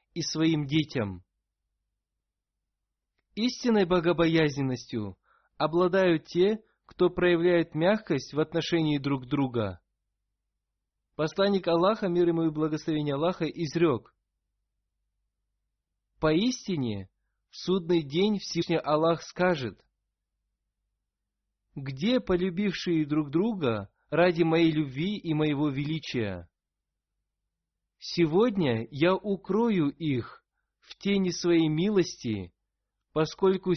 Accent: native